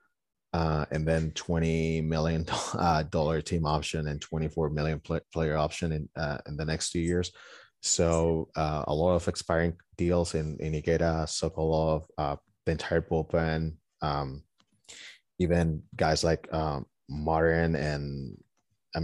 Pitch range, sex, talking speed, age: 80-90 Hz, male, 140 wpm, 30-49